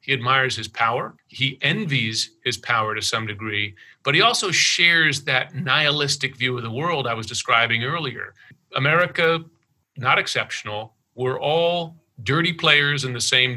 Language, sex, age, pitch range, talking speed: English, male, 40-59, 120-150 Hz, 155 wpm